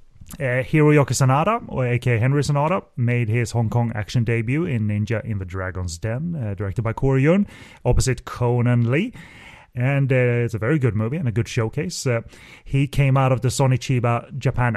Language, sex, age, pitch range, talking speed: English, male, 30-49, 110-135 Hz, 180 wpm